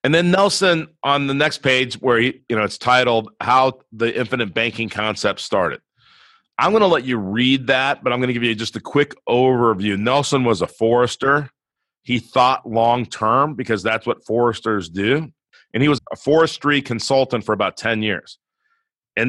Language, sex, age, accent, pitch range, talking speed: English, male, 40-59, American, 110-140 Hz, 185 wpm